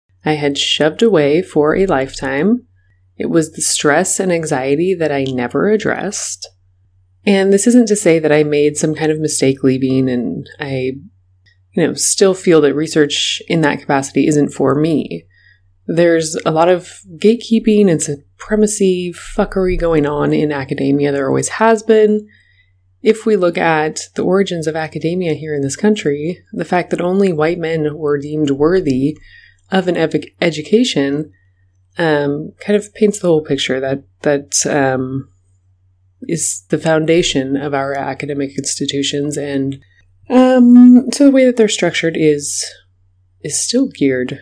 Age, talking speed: 20-39, 155 wpm